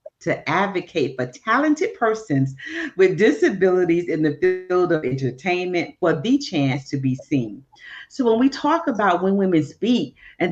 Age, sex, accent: 40-59, female, American